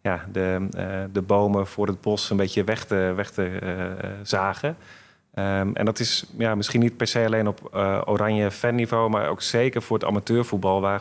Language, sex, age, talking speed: Dutch, male, 30-49, 175 wpm